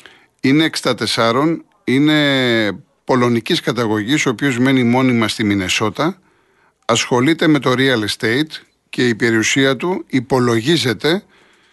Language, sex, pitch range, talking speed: Greek, male, 125-160 Hz, 105 wpm